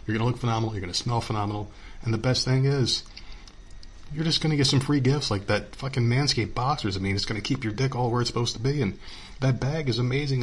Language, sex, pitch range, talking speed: English, male, 105-135 Hz, 270 wpm